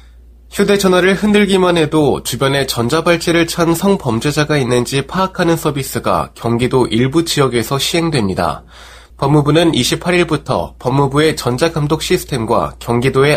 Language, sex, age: Korean, male, 20-39